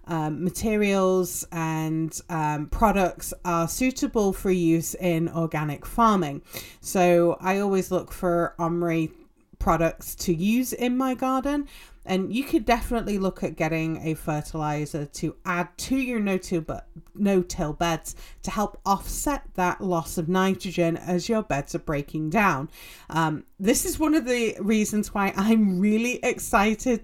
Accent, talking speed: British, 140 wpm